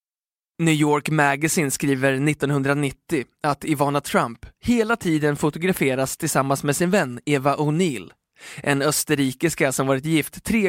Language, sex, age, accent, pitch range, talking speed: Swedish, male, 20-39, native, 135-170 Hz, 130 wpm